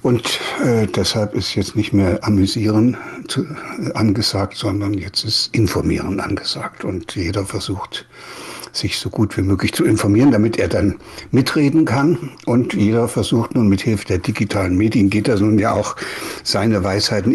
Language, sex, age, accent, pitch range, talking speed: German, male, 60-79, German, 100-110 Hz, 160 wpm